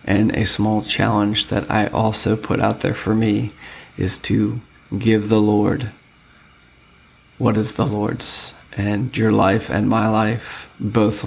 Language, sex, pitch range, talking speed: English, male, 105-110 Hz, 150 wpm